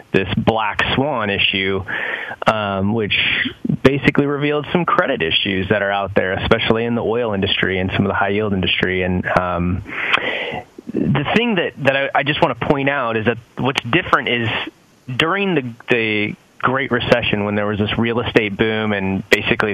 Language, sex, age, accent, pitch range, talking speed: English, male, 30-49, American, 100-125 Hz, 175 wpm